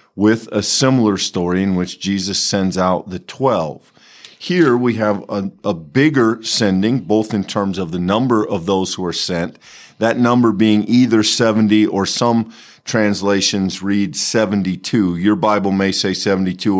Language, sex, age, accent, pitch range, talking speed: English, male, 50-69, American, 95-120 Hz, 155 wpm